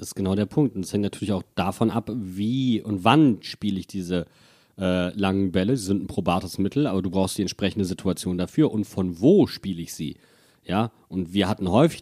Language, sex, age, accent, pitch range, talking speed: German, male, 40-59, German, 100-135 Hz, 220 wpm